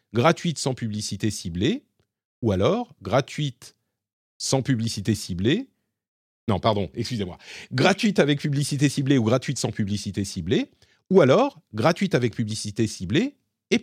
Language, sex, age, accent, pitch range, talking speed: French, male, 40-59, French, 105-150 Hz, 125 wpm